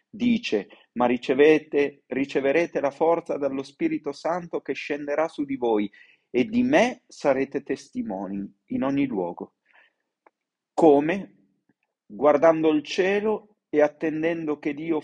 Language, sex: Italian, male